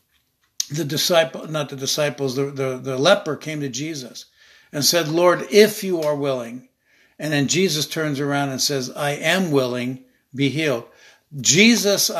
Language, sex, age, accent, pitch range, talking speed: English, male, 60-79, American, 135-165 Hz, 155 wpm